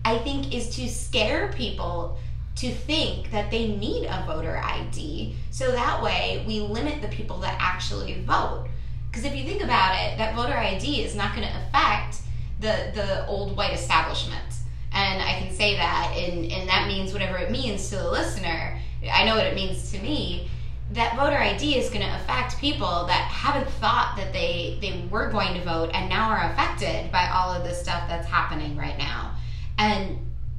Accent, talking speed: American, 190 wpm